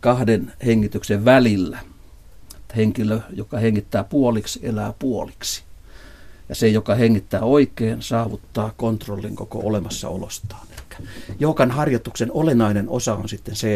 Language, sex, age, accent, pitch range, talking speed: Finnish, male, 60-79, native, 100-115 Hz, 120 wpm